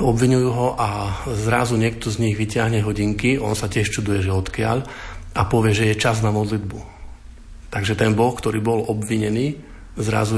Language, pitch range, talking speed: Slovak, 100-115 Hz, 170 wpm